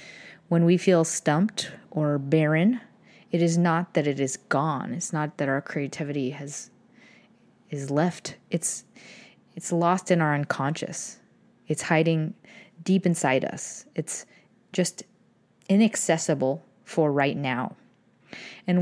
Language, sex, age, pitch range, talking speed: English, female, 30-49, 150-190 Hz, 125 wpm